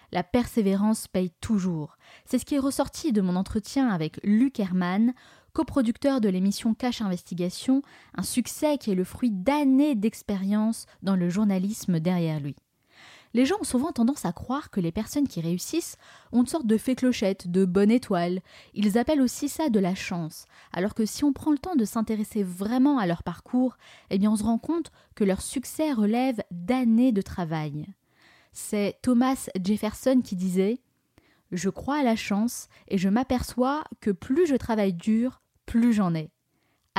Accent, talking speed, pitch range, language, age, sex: French, 175 wpm, 190-255 Hz, French, 20-39, female